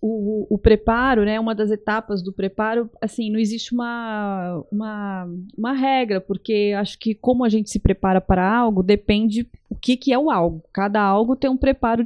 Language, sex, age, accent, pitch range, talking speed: Portuguese, female, 30-49, Brazilian, 195-240 Hz, 195 wpm